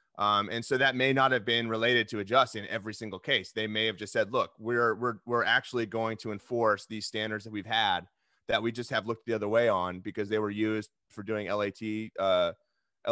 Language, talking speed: English, 225 wpm